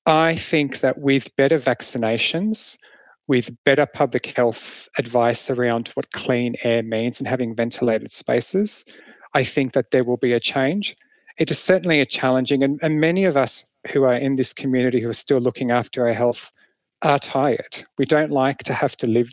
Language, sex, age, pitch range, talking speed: English, male, 40-59, 120-140 Hz, 185 wpm